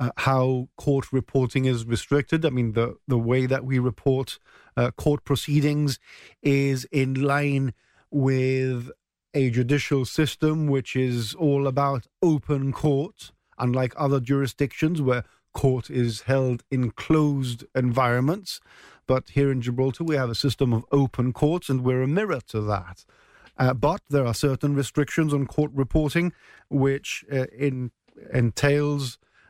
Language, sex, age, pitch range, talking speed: English, male, 50-69, 125-145 Hz, 140 wpm